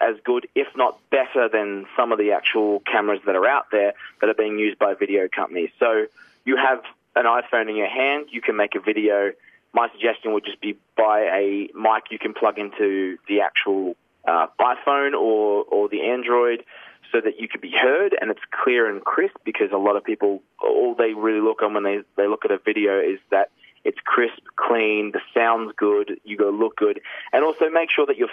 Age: 20-39